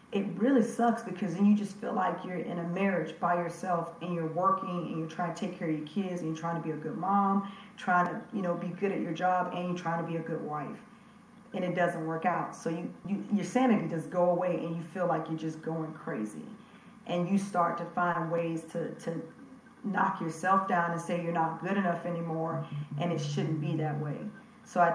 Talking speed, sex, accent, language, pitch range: 240 wpm, female, American, English, 165-195 Hz